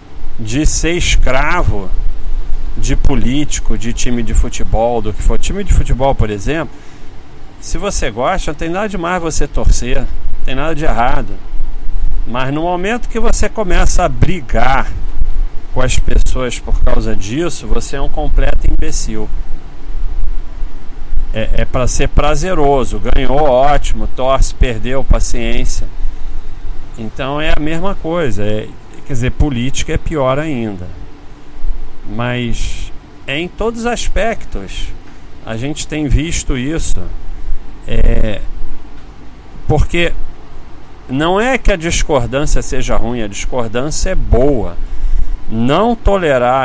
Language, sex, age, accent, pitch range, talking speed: Portuguese, male, 40-59, Brazilian, 105-155 Hz, 125 wpm